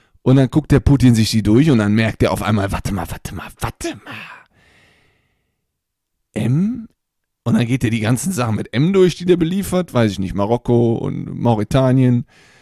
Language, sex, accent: German, male, German